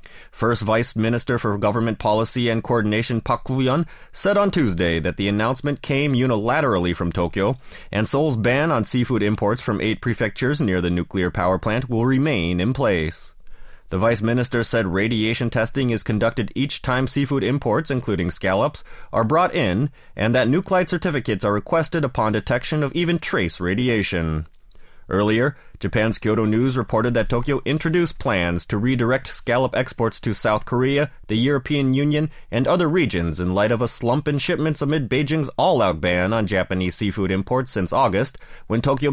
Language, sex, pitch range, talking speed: English, male, 105-145 Hz, 165 wpm